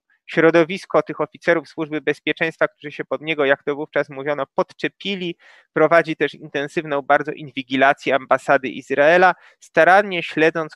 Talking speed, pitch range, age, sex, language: 130 wpm, 135-165 Hz, 20-39, male, Polish